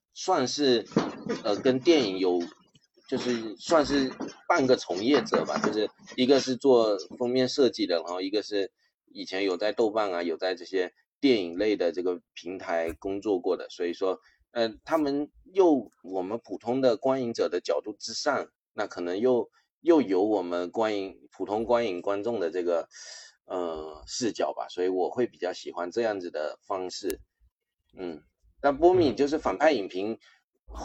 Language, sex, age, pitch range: Chinese, male, 30-49, 95-130 Hz